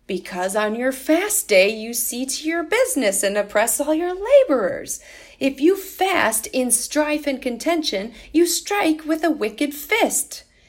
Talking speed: 155 wpm